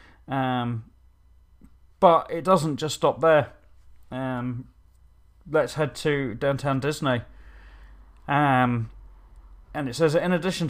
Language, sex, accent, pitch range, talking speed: English, male, British, 95-145 Hz, 110 wpm